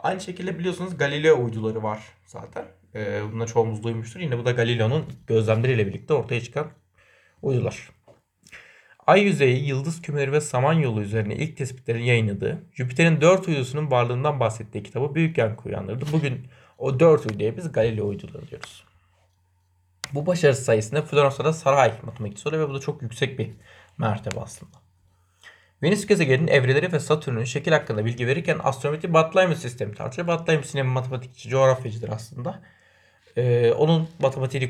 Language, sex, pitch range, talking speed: Turkish, male, 110-150 Hz, 140 wpm